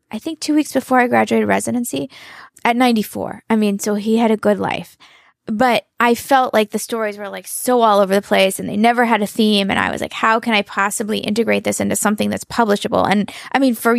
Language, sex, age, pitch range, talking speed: English, female, 20-39, 210-255 Hz, 235 wpm